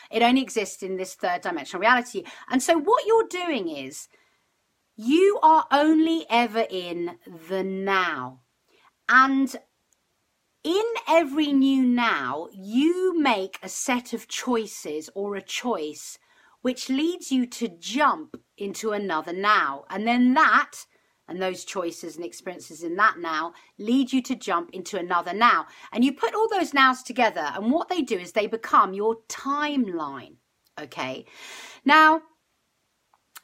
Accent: British